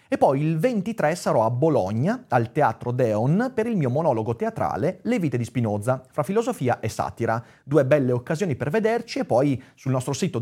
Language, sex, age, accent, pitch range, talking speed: Italian, male, 30-49, native, 120-170 Hz, 190 wpm